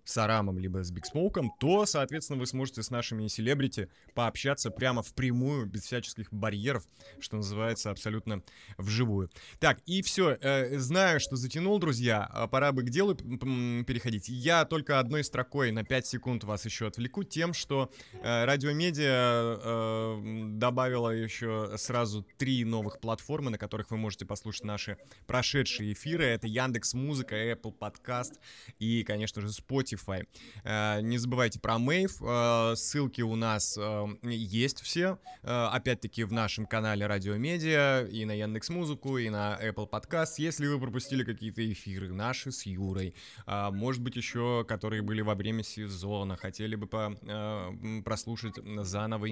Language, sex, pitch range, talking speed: Russian, male, 105-130 Hz, 140 wpm